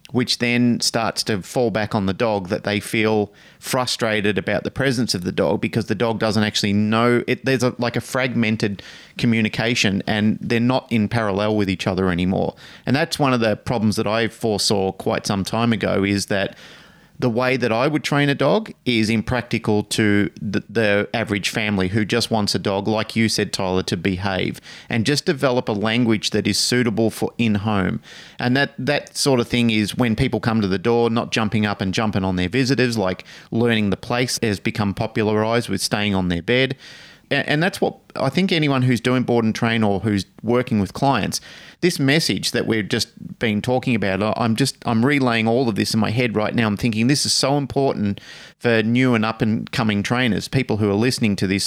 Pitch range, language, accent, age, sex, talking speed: 105-125 Hz, English, Australian, 30-49, male, 210 wpm